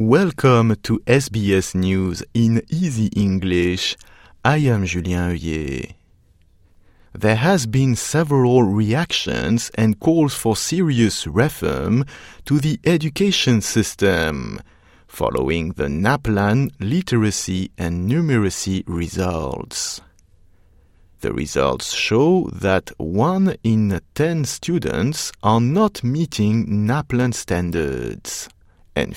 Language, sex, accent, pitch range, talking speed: English, male, French, 90-135 Hz, 95 wpm